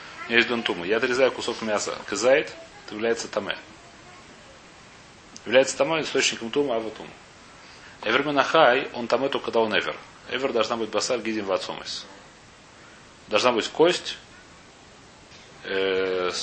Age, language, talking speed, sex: 30-49, Russian, 115 wpm, male